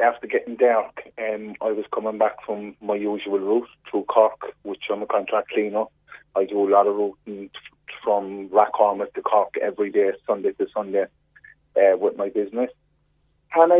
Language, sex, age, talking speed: English, male, 30-49, 170 wpm